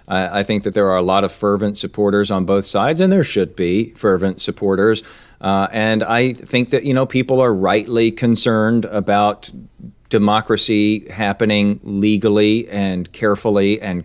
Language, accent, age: English, American, 40-59